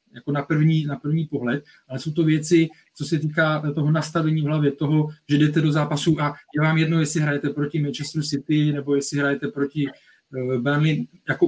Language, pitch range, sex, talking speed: Czech, 140-160 Hz, male, 195 wpm